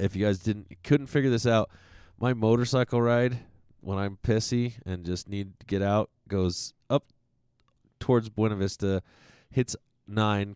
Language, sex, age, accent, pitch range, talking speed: English, male, 20-39, American, 90-115 Hz, 155 wpm